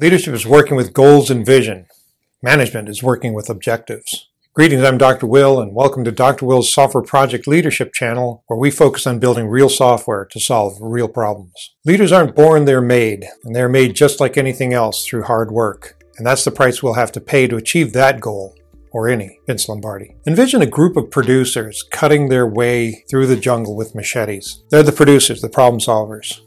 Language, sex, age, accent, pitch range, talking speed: English, male, 40-59, American, 115-145 Hz, 195 wpm